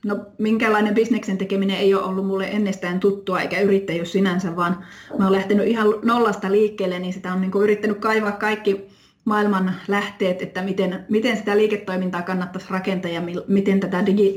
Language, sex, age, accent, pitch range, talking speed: Finnish, female, 20-39, native, 185-215 Hz, 165 wpm